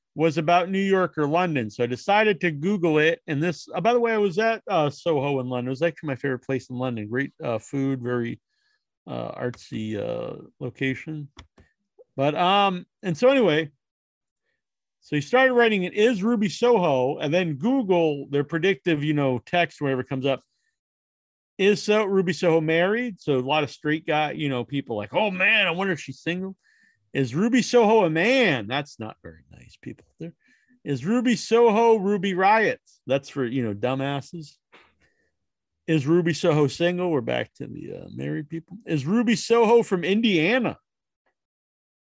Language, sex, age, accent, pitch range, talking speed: English, male, 40-59, American, 140-200 Hz, 175 wpm